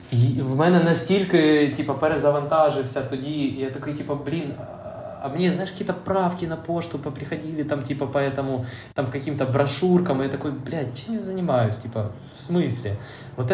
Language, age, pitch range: Ukrainian, 20-39, 115-145 Hz